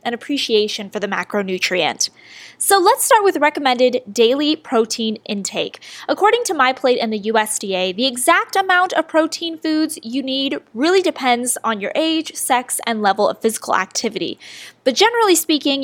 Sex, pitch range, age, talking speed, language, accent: female, 230-335 Hz, 10-29, 155 wpm, English, American